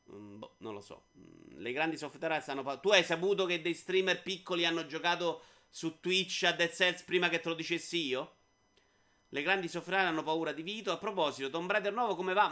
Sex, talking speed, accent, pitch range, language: male, 215 wpm, native, 135-195 Hz, Italian